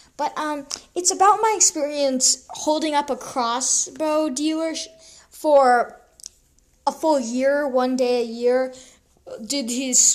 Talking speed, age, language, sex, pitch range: 125 wpm, 10-29, English, female, 245-290 Hz